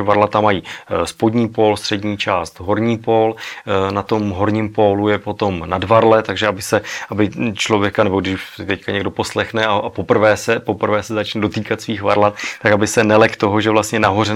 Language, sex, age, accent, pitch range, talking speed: Czech, male, 30-49, native, 100-110 Hz, 170 wpm